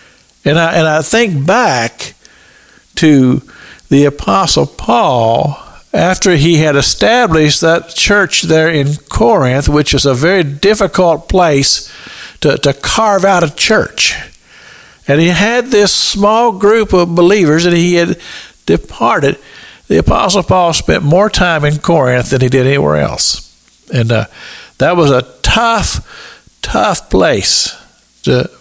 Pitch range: 165-245 Hz